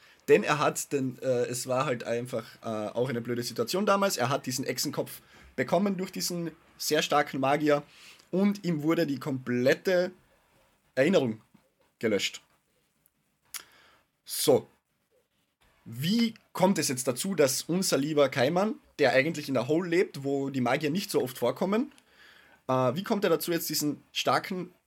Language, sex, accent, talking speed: German, male, German, 150 wpm